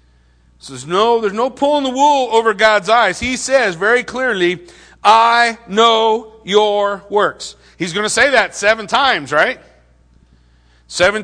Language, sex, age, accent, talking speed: English, male, 50-69, American, 145 wpm